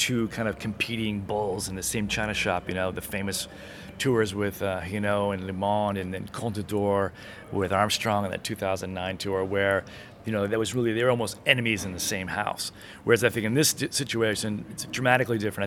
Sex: male